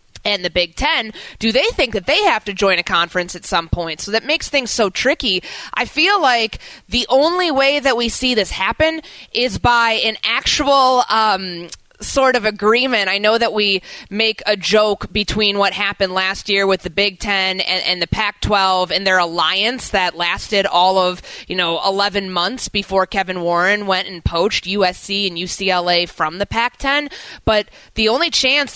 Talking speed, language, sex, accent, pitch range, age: 190 wpm, English, female, American, 185-230 Hz, 20-39